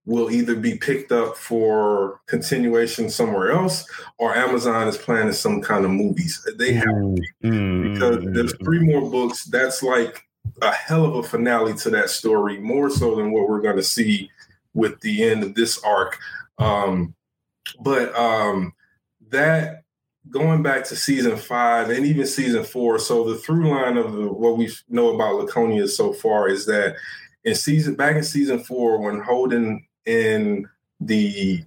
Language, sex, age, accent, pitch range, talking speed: English, male, 20-39, American, 110-155 Hz, 165 wpm